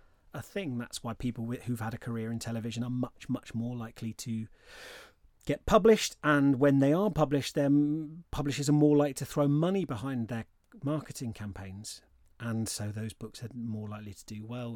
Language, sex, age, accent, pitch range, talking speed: English, male, 30-49, British, 110-140 Hz, 185 wpm